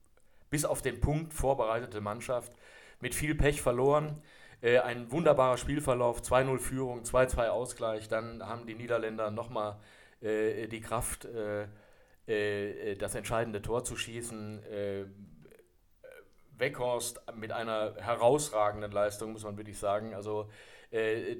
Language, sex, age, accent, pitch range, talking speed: German, male, 40-59, German, 105-125 Hz, 125 wpm